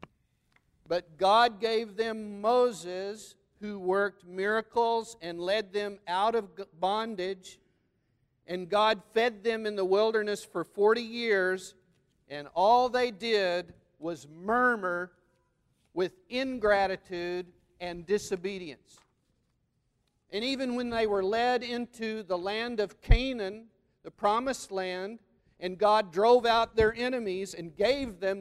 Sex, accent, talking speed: male, American, 120 wpm